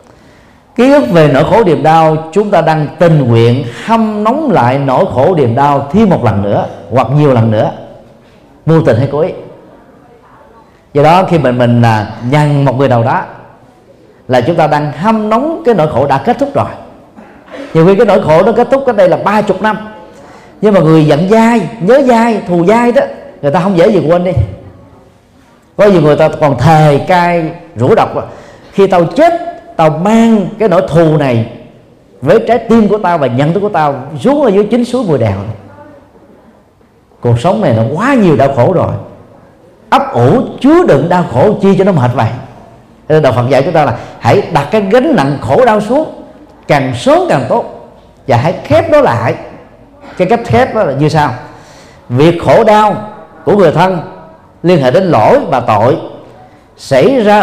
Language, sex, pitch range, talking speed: Vietnamese, male, 140-215 Hz, 195 wpm